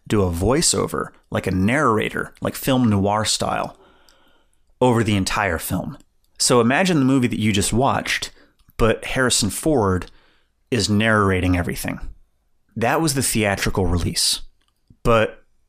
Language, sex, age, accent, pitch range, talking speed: English, male, 30-49, American, 95-120 Hz, 130 wpm